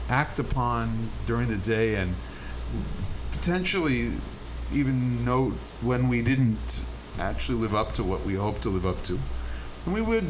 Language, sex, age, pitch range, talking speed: English, male, 40-59, 85-130 Hz, 150 wpm